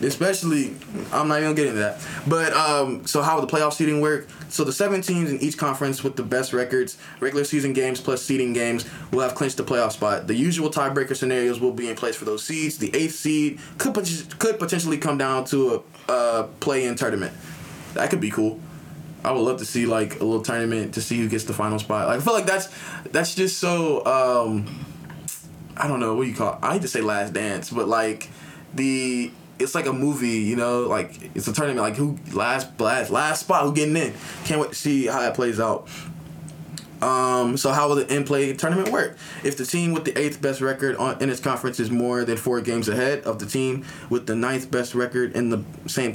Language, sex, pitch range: English, male, 120-155 Hz